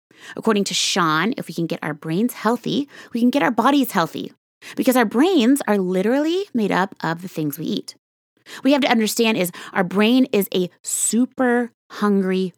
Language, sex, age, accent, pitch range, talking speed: English, female, 20-39, American, 175-265 Hz, 190 wpm